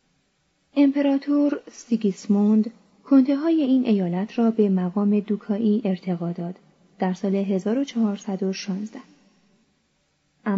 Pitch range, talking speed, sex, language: 195-250 Hz, 80 wpm, female, Persian